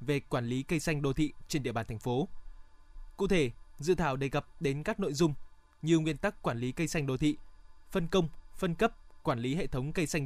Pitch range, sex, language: 135-175 Hz, male, Vietnamese